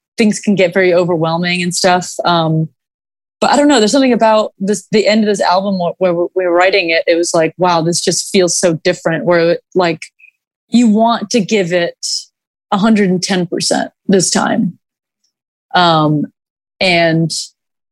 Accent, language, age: American, English, 30-49